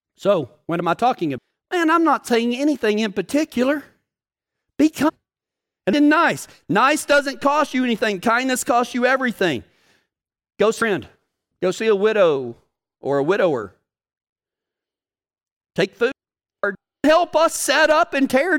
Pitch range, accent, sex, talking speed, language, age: 220-295 Hz, American, male, 145 wpm, English, 40-59